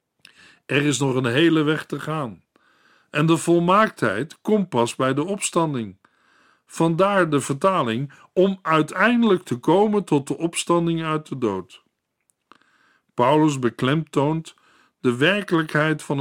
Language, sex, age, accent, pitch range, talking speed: Dutch, male, 50-69, Dutch, 145-185 Hz, 125 wpm